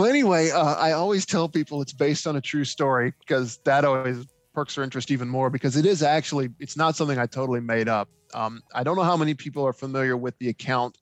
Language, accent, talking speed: English, American, 240 wpm